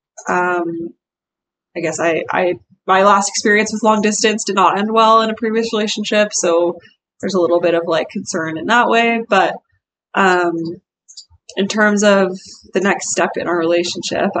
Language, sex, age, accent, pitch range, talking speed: English, female, 20-39, American, 170-195 Hz, 170 wpm